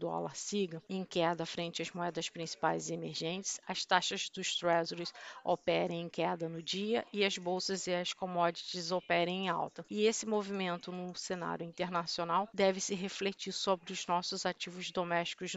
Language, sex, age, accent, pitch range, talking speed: Portuguese, female, 50-69, Brazilian, 175-195 Hz, 165 wpm